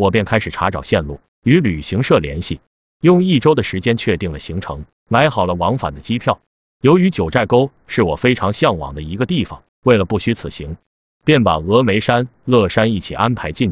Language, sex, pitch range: Chinese, male, 95-130 Hz